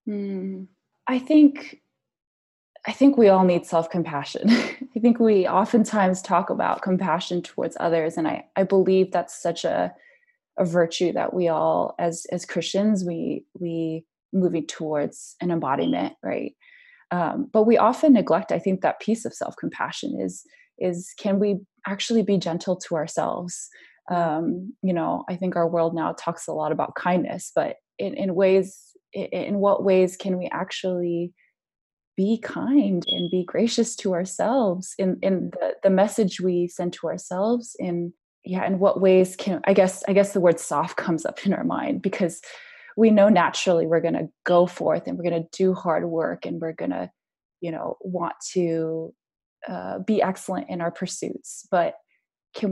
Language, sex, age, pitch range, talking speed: English, female, 20-39, 175-215 Hz, 165 wpm